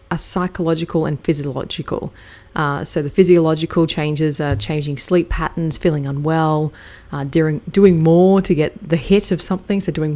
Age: 20-39